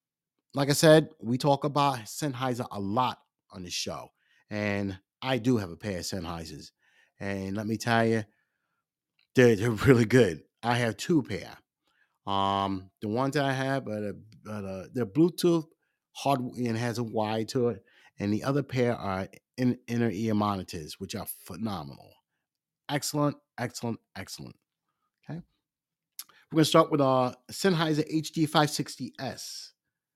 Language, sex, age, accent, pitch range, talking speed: English, male, 30-49, American, 105-140 Hz, 140 wpm